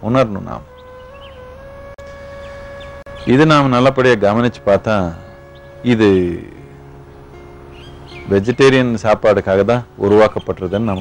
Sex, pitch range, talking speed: male, 90-130 Hz, 65 wpm